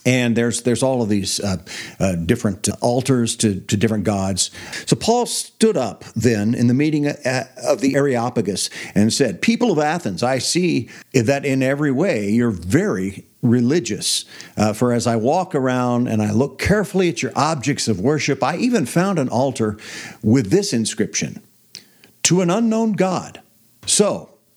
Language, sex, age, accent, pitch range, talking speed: English, male, 50-69, American, 115-150 Hz, 165 wpm